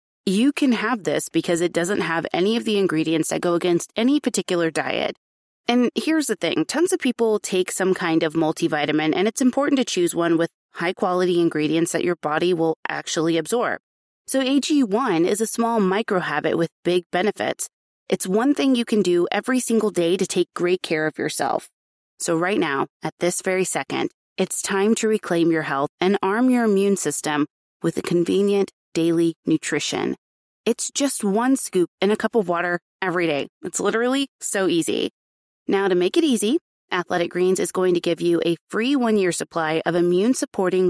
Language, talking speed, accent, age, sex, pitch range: English, 190 wpm, American, 20-39, female, 170-230 Hz